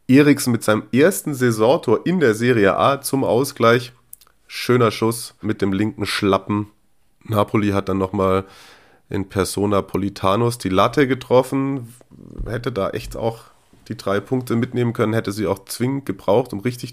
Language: German